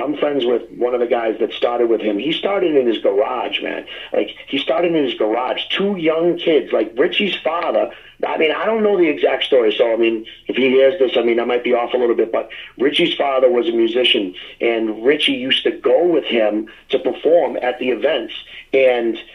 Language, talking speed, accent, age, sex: English, 225 wpm, American, 40-59, male